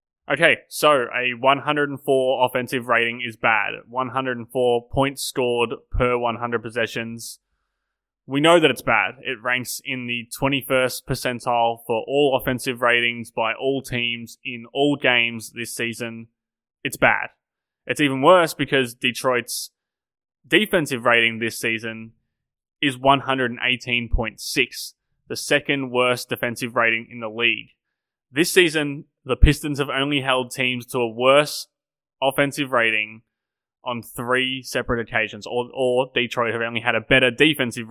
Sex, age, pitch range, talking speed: male, 20-39, 120-140 Hz, 135 wpm